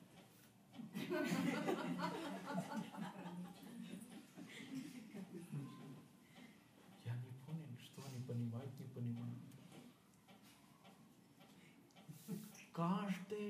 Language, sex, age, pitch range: Russian, male, 50-69, 115-175 Hz